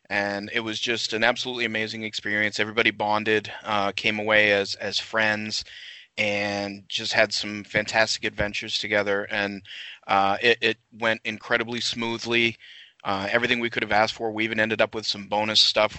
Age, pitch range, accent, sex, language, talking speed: 30-49, 100-115 Hz, American, male, English, 170 wpm